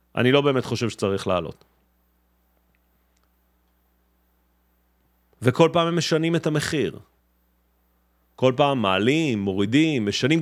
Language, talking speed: Hebrew, 100 wpm